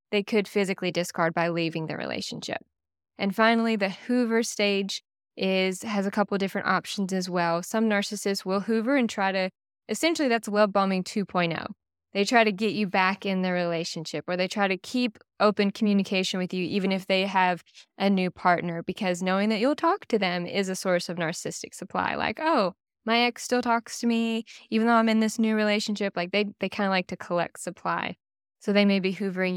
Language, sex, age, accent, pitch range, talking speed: English, female, 10-29, American, 180-220 Hz, 205 wpm